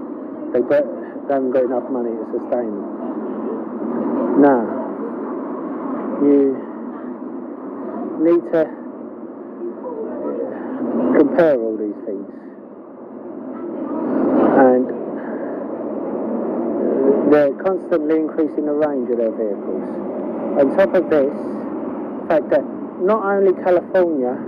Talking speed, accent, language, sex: 90 wpm, British, English, male